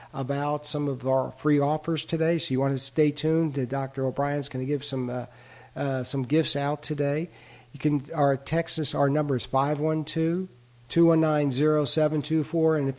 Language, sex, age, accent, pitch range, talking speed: English, male, 50-69, American, 130-150 Hz, 165 wpm